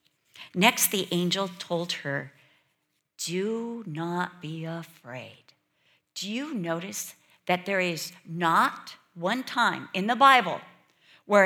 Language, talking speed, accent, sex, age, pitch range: English, 115 wpm, American, female, 50-69, 155-215 Hz